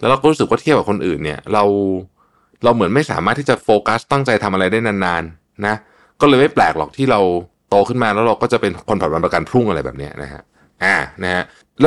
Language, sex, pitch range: Thai, male, 80-125 Hz